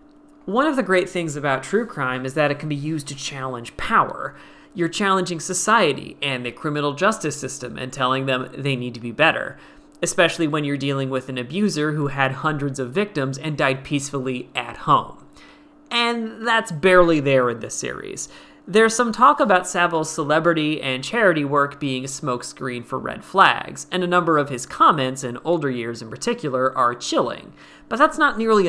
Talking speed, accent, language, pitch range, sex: 185 wpm, American, English, 130-175 Hz, male